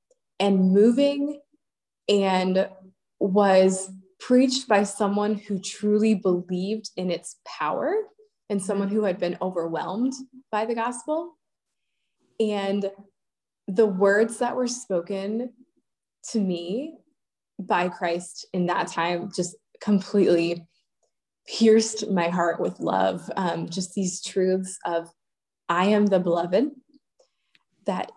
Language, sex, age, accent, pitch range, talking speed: English, female, 20-39, American, 180-225 Hz, 110 wpm